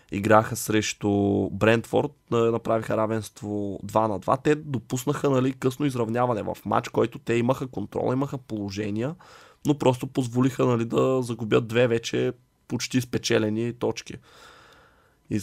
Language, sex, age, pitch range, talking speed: Bulgarian, male, 20-39, 105-120 Hz, 130 wpm